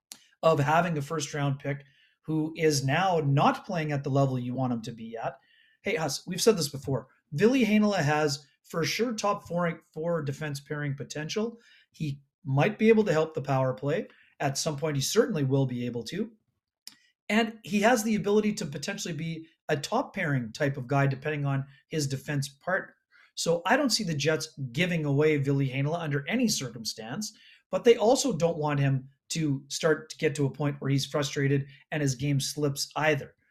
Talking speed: 195 wpm